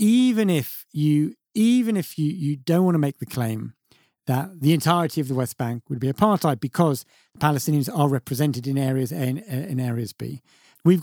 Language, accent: English, British